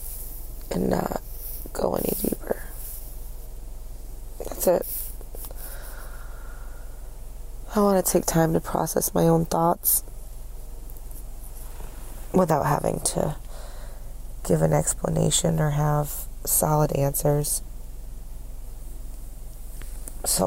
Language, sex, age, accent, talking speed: English, female, 20-39, American, 80 wpm